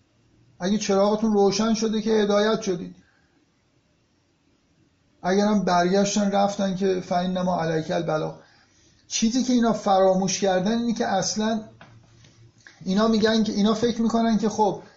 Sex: male